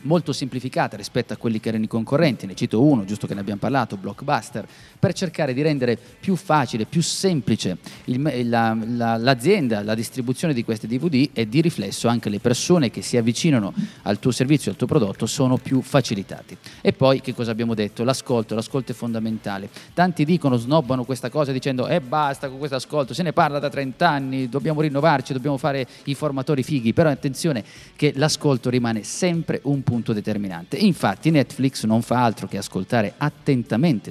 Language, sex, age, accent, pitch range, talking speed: Italian, male, 30-49, native, 115-150 Hz, 185 wpm